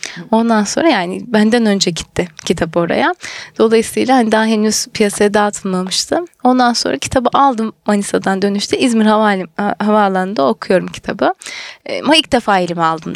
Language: Turkish